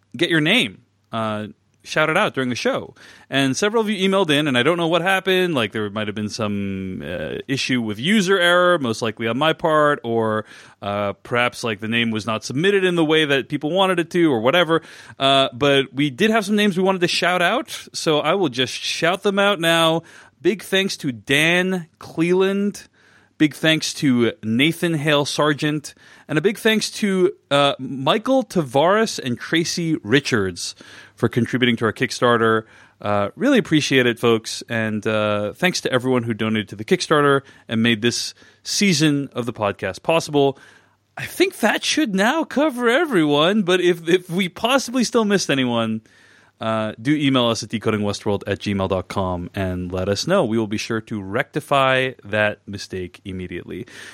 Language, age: English, 30-49